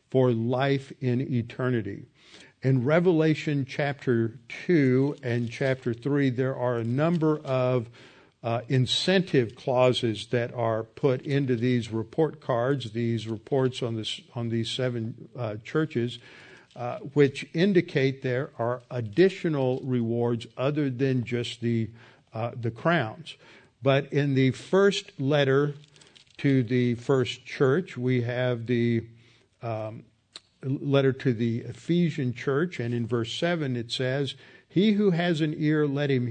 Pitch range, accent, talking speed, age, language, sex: 120-145 Hz, American, 130 wpm, 50-69, English, male